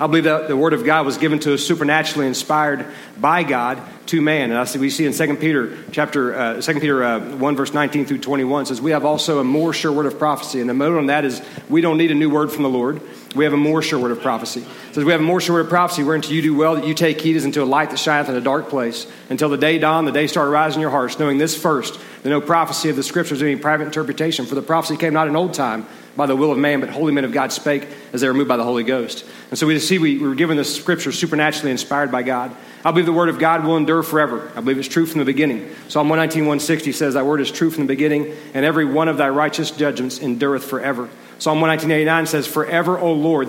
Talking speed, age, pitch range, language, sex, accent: 275 wpm, 40-59, 135-155 Hz, English, male, American